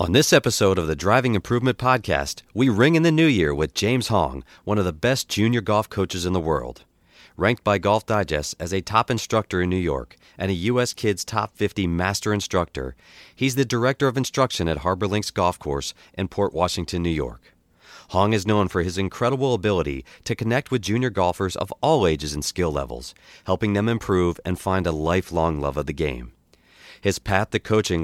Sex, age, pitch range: male, 40-59, 85-110 Hz